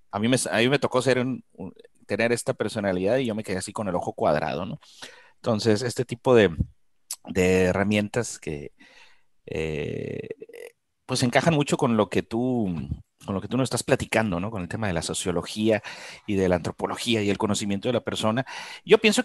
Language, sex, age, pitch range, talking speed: Spanish, male, 40-59, 110-155 Hz, 195 wpm